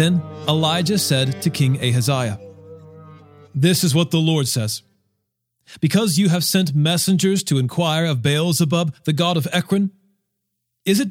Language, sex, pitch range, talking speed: English, male, 125-170 Hz, 145 wpm